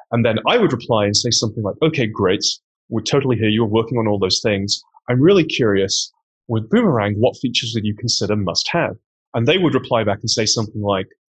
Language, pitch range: English, 105-135 Hz